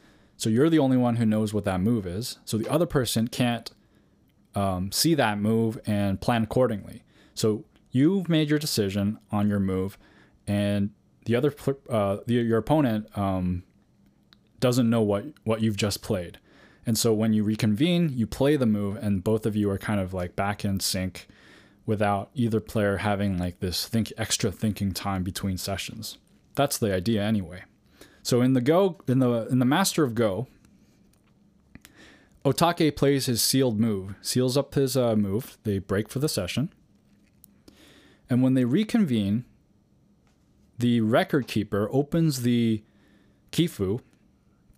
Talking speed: 160 wpm